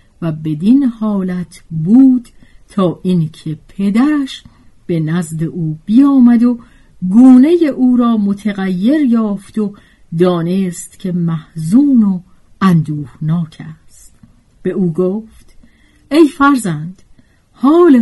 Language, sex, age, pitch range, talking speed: Persian, female, 50-69, 155-235 Hz, 100 wpm